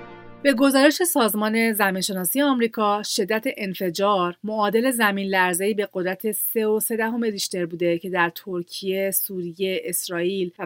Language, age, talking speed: Persian, 30-49, 115 wpm